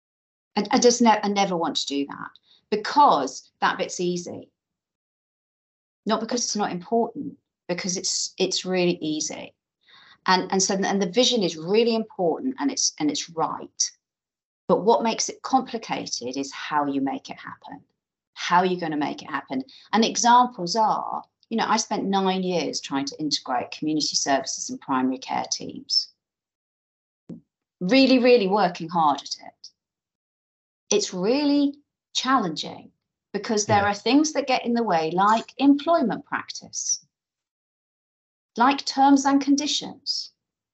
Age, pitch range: 40-59, 180-265 Hz